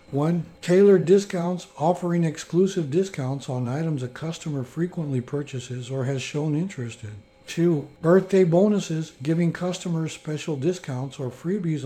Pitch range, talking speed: 130-175 Hz, 130 wpm